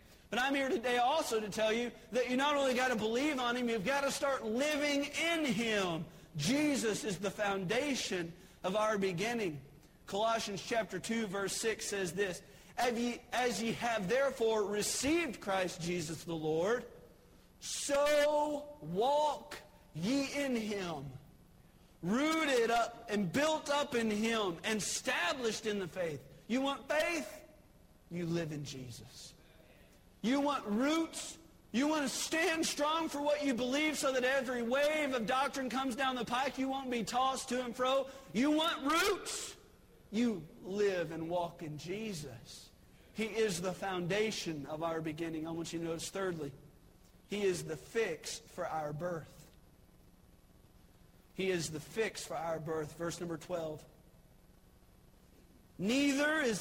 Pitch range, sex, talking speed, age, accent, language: 175-270 Hz, male, 150 wpm, 40-59, American, English